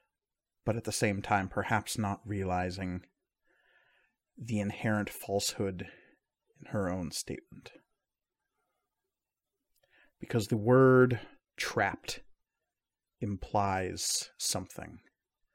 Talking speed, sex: 80 wpm, male